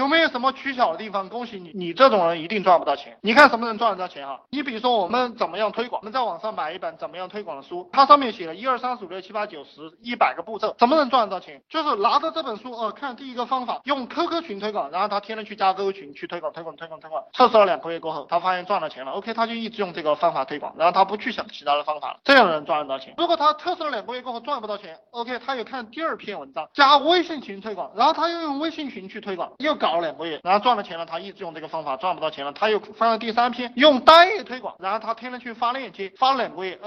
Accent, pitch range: native, 175-265 Hz